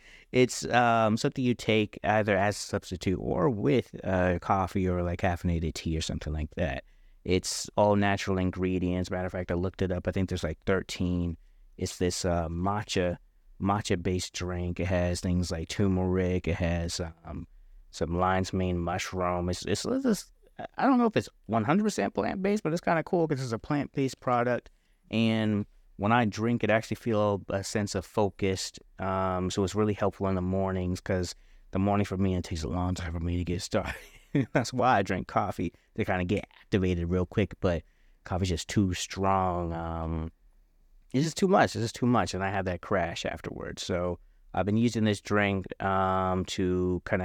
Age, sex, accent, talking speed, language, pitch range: 30-49, male, American, 195 wpm, English, 90-105 Hz